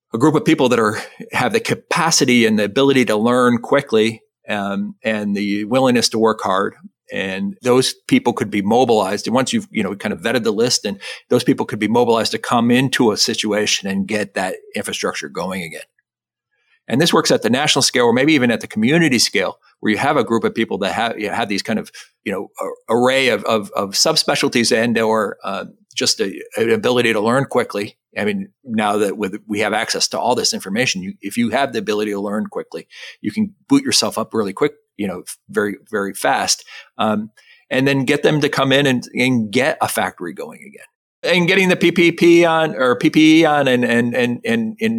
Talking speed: 215 wpm